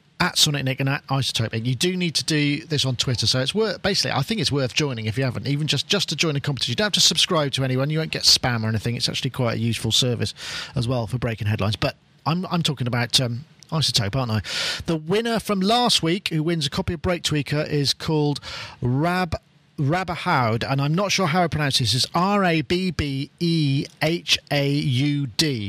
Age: 40-59